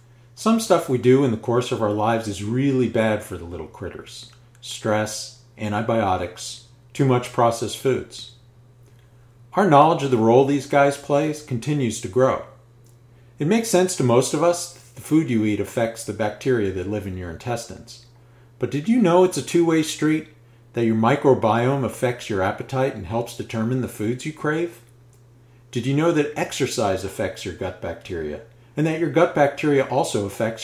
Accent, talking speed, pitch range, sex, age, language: American, 180 wpm, 115-140 Hz, male, 40-59, English